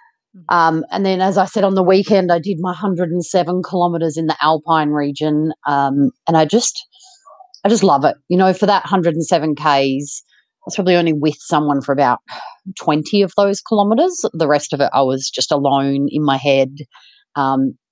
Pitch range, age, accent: 145-185 Hz, 30-49, Australian